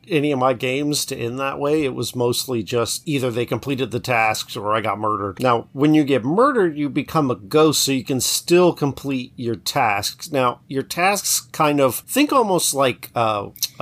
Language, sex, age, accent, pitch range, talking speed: English, male, 40-59, American, 120-150 Hz, 200 wpm